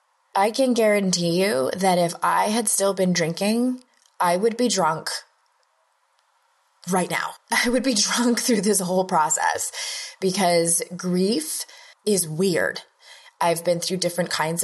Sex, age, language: female, 20-39, English